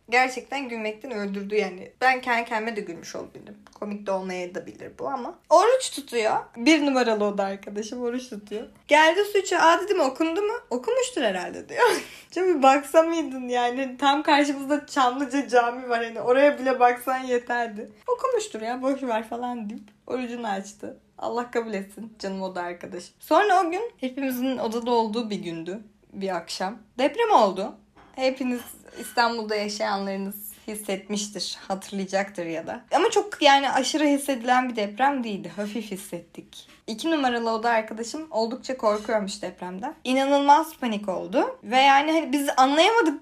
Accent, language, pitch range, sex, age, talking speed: native, Turkish, 215-295 Hz, female, 20-39, 145 wpm